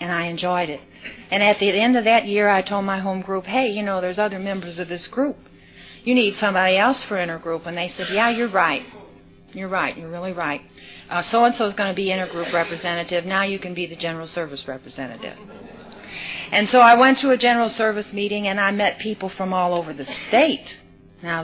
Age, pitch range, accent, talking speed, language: 50-69, 170-200 Hz, American, 215 wpm, English